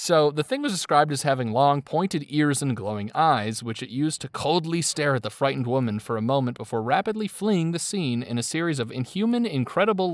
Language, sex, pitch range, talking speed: English, male, 125-170 Hz, 220 wpm